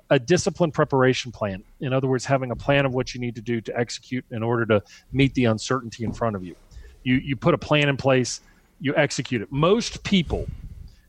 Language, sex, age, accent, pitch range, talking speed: English, male, 40-59, American, 120-145 Hz, 215 wpm